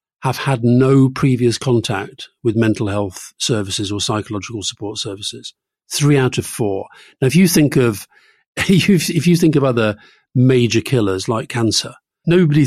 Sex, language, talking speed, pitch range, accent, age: male, English, 150 wpm, 110-135 Hz, British, 40-59